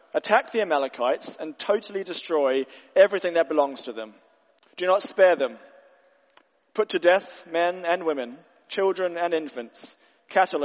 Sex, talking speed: male, 140 wpm